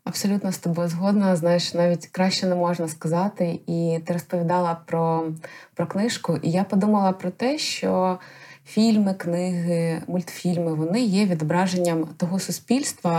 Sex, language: female, Ukrainian